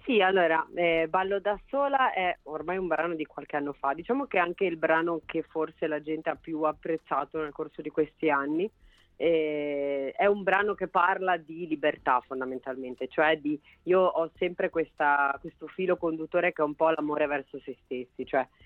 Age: 30-49